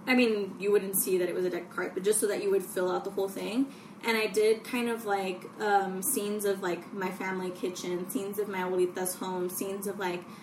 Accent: American